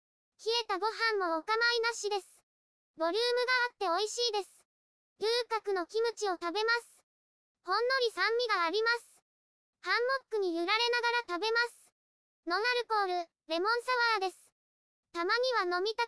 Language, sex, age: Japanese, male, 20-39